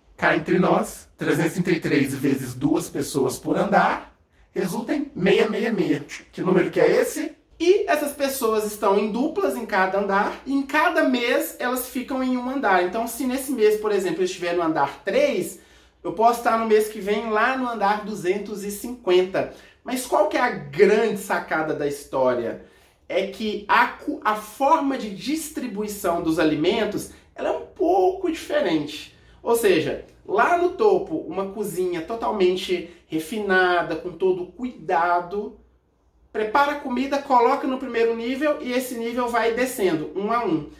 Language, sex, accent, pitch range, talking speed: Portuguese, male, Brazilian, 195-285 Hz, 155 wpm